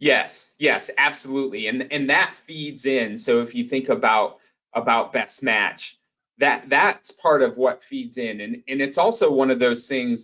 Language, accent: English, American